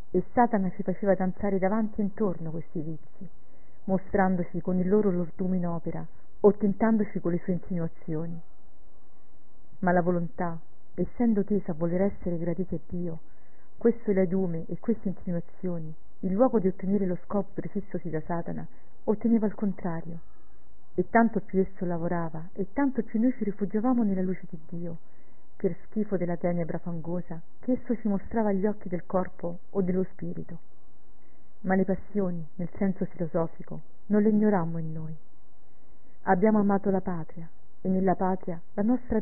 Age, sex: 50-69, female